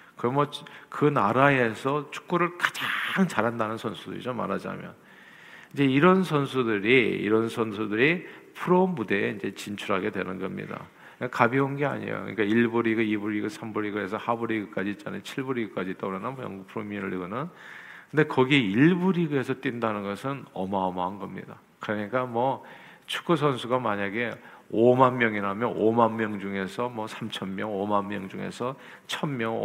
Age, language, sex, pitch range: 50-69, Korean, male, 105-140 Hz